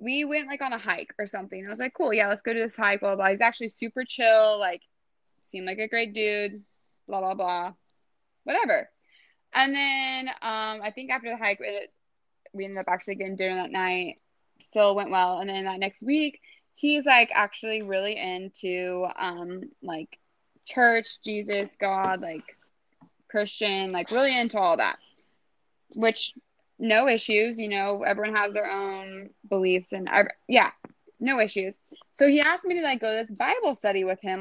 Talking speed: 185 wpm